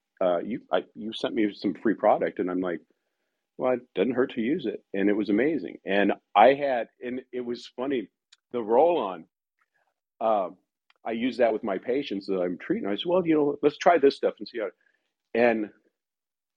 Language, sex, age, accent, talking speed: English, male, 50-69, American, 205 wpm